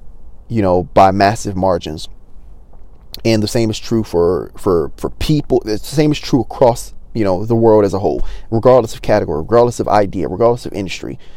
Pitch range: 95-120 Hz